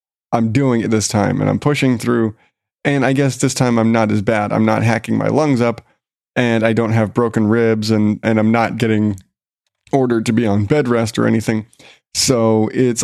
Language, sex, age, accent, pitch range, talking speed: English, male, 30-49, American, 115-140 Hz, 205 wpm